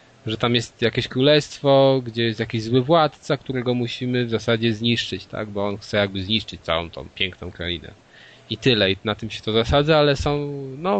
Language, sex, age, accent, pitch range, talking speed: Polish, male, 20-39, native, 110-135 Hz, 195 wpm